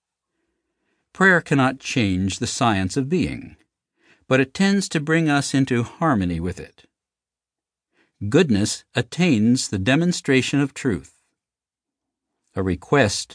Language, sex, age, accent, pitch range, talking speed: English, male, 60-79, American, 110-150 Hz, 110 wpm